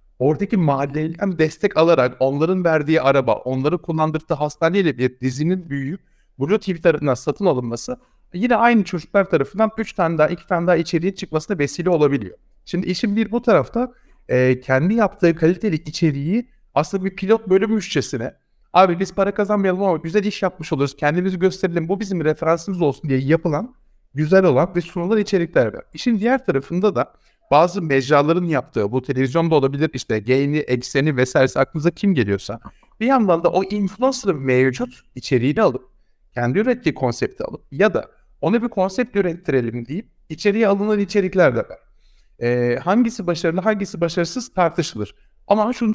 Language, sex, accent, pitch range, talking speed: Turkish, male, native, 140-200 Hz, 155 wpm